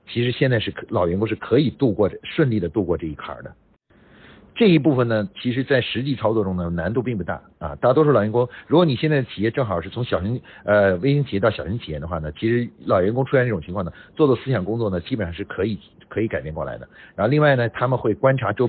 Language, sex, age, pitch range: Chinese, male, 50-69, 85-130 Hz